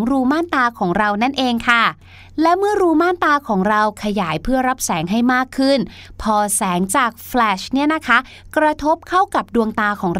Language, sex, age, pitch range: Thai, female, 20-39, 205-280 Hz